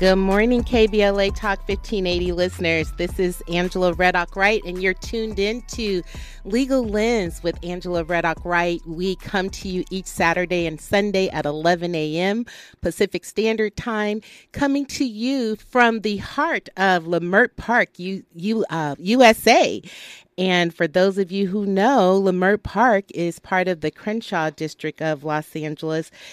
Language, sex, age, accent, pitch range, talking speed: English, female, 40-59, American, 160-195 Hz, 145 wpm